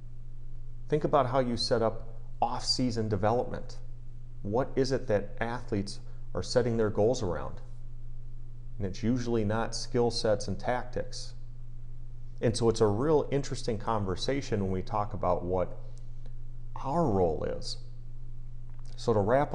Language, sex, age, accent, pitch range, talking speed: English, male, 40-59, American, 105-120 Hz, 135 wpm